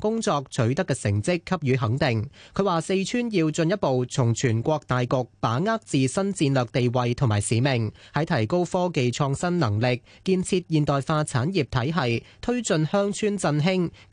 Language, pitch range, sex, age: Chinese, 125-180 Hz, male, 20-39